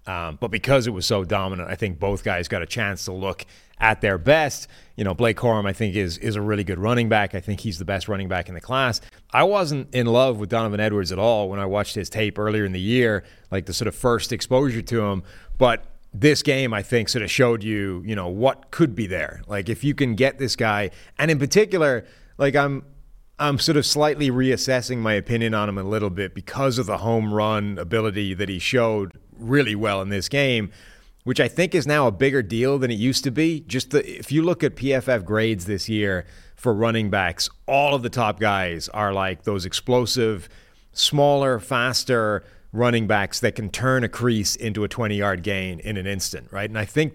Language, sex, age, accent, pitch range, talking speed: English, male, 30-49, American, 100-130 Hz, 225 wpm